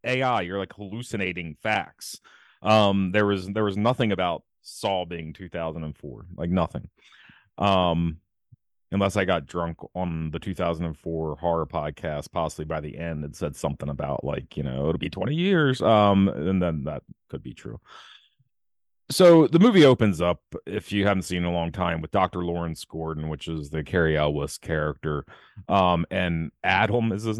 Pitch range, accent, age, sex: 75-95 Hz, American, 30-49, male